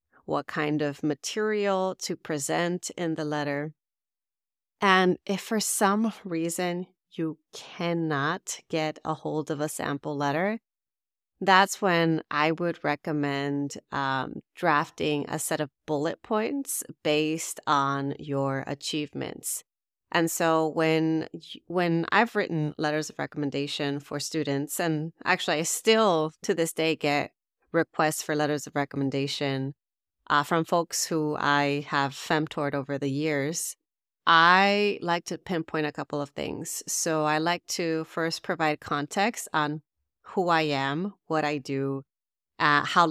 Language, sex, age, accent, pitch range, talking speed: English, female, 30-49, American, 145-175 Hz, 135 wpm